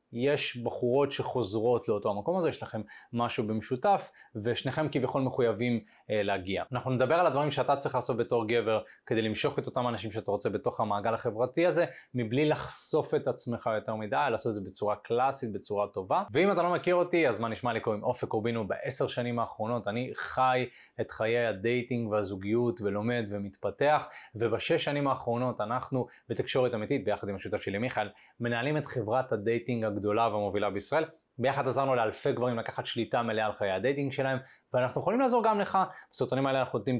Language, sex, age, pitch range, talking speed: Hebrew, male, 20-39, 115-150 Hz, 175 wpm